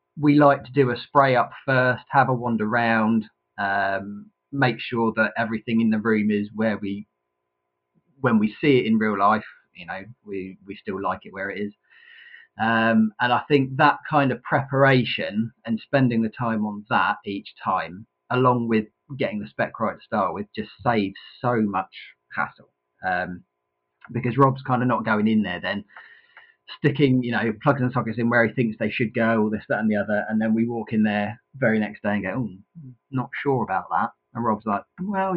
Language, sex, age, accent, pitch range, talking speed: English, male, 30-49, British, 100-130 Hz, 205 wpm